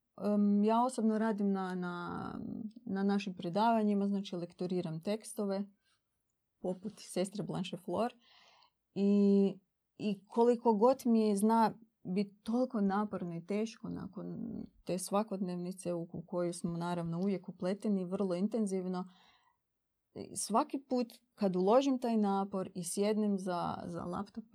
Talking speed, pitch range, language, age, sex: 120 wpm, 185-220 Hz, Croatian, 30-49, female